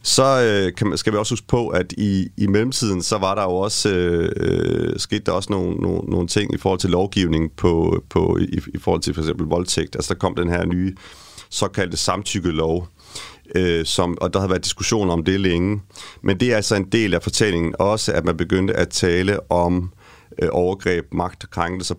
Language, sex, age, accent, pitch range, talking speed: Danish, male, 30-49, native, 85-105 Hz, 200 wpm